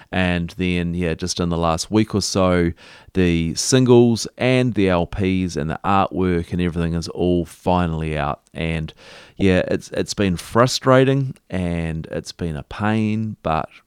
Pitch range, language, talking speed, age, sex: 80-105 Hz, English, 155 wpm, 30-49, male